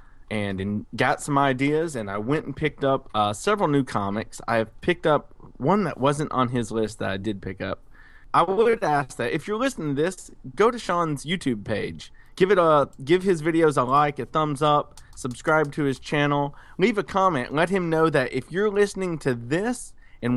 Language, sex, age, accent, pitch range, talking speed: English, male, 30-49, American, 110-155 Hz, 210 wpm